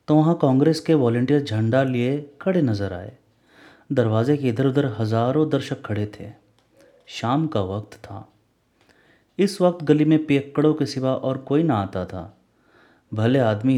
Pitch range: 110-135 Hz